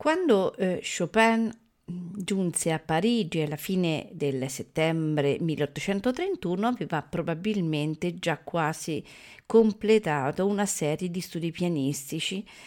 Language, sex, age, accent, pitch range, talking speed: Italian, female, 40-59, native, 155-210 Hz, 100 wpm